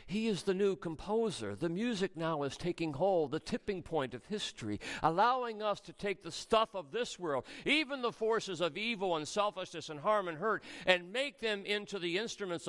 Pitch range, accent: 190-245 Hz, American